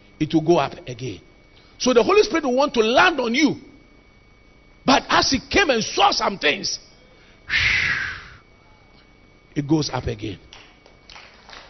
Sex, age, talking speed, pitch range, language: male, 50-69, 140 wpm, 205-305 Hz, English